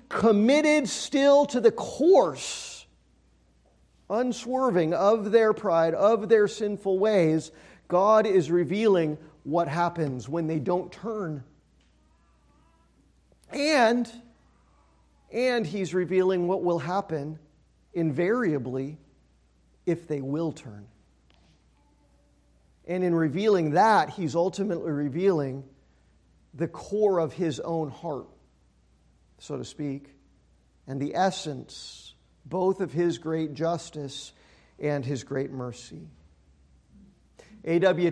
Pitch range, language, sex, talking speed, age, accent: 140-195 Hz, English, male, 100 wpm, 40-59, American